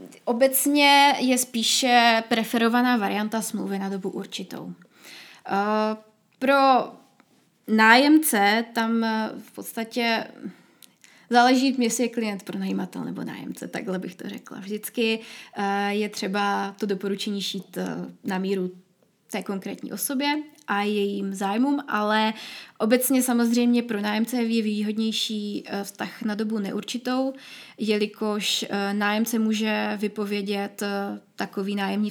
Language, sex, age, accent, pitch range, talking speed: Czech, female, 20-39, native, 200-235 Hz, 105 wpm